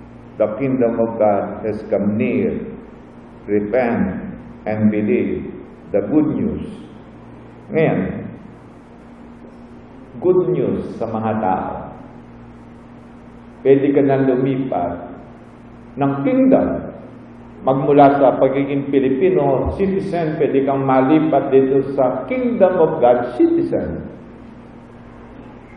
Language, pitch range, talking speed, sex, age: English, 110-170 Hz, 90 wpm, male, 50-69